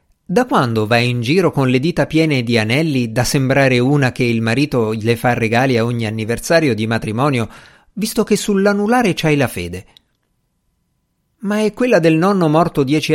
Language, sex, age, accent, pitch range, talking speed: Italian, male, 50-69, native, 110-155 Hz, 175 wpm